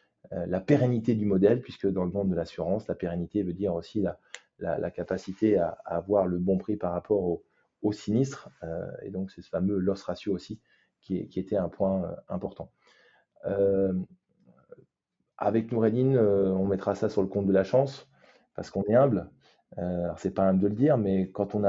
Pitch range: 95-105 Hz